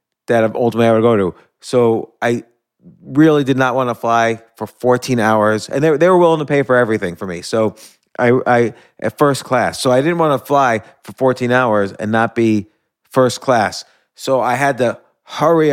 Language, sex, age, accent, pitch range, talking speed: English, male, 30-49, American, 120-150 Hz, 200 wpm